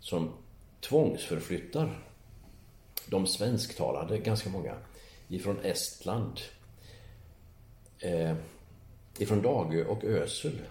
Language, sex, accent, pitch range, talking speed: Swedish, male, native, 85-110 Hz, 75 wpm